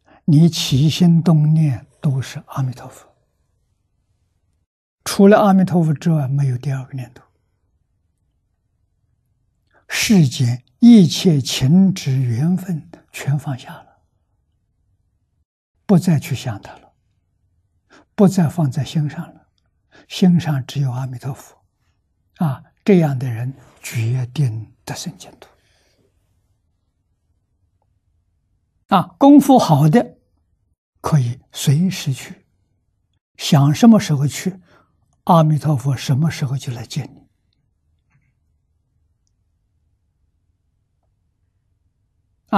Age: 60-79